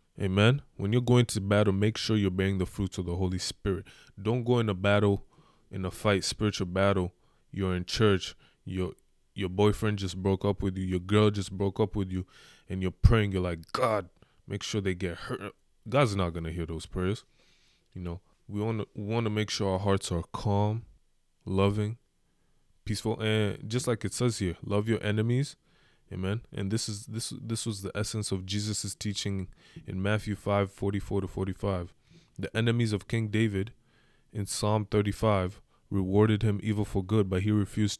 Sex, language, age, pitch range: male, English, 20-39, 95-110 Hz